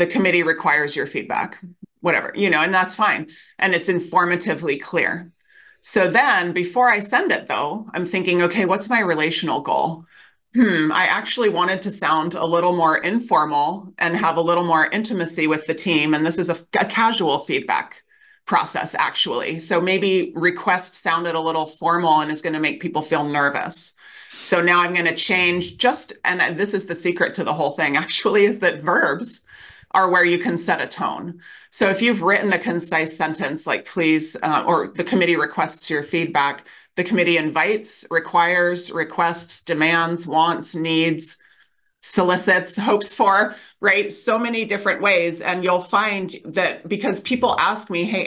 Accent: American